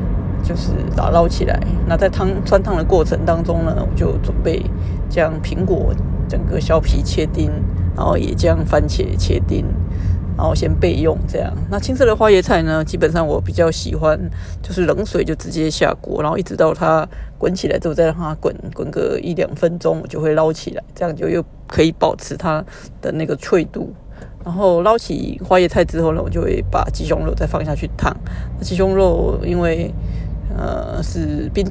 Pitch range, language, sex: 85-100 Hz, Chinese, female